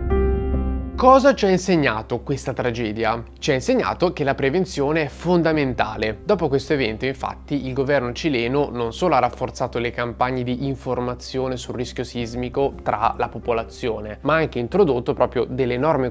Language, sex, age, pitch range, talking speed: Italian, male, 20-39, 120-155 Hz, 155 wpm